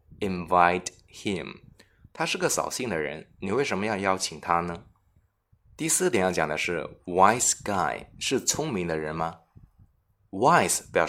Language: Chinese